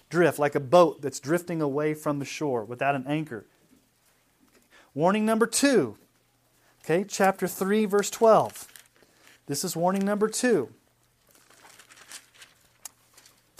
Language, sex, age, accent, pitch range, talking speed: English, male, 30-49, American, 150-215 Hz, 110 wpm